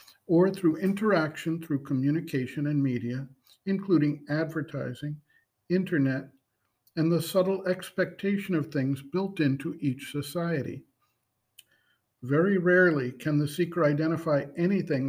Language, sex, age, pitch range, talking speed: English, male, 50-69, 140-175 Hz, 105 wpm